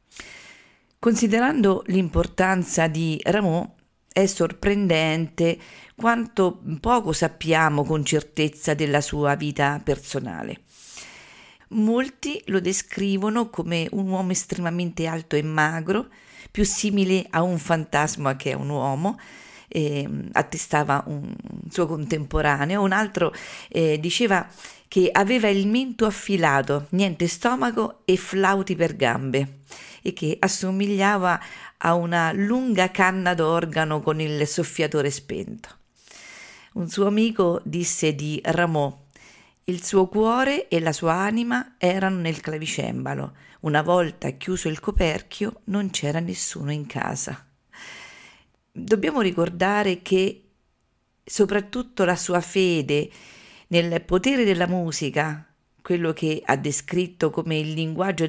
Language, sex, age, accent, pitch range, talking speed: Italian, female, 40-59, native, 155-200 Hz, 115 wpm